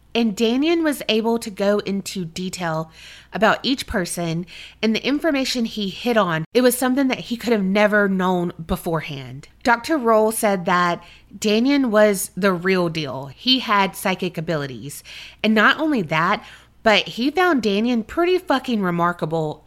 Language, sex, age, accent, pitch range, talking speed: English, female, 30-49, American, 185-240 Hz, 155 wpm